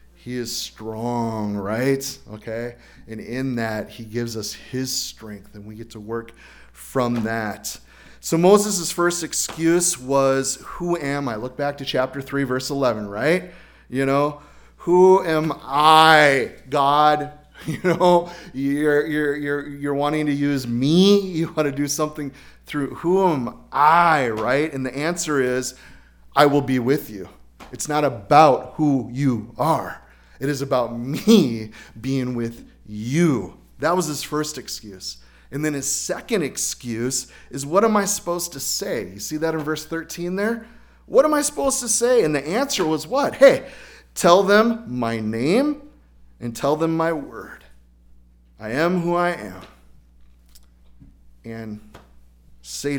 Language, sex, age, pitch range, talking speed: English, male, 30-49, 115-160 Hz, 155 wpm